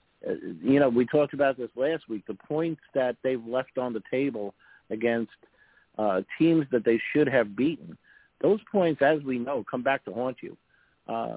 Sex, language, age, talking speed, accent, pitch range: male, English, 50-69, 185 wpm, American, 120-145 Hz